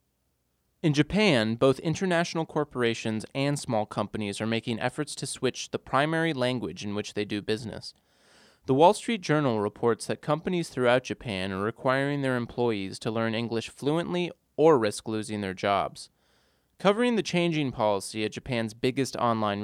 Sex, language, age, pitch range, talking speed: male, English, 20-39, 110-140 Hz, 155 wpm